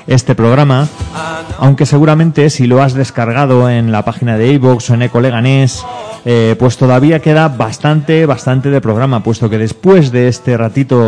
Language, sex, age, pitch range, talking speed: Spanish, male, 30-49, 110-135 Hz, 160 wpm